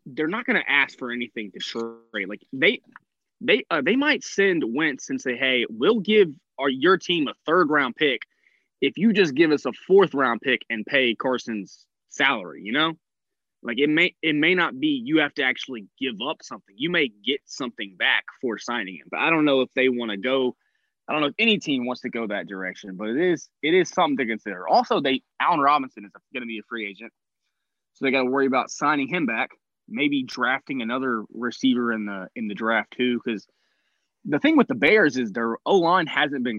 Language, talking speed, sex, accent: English, 220 wpm, male, American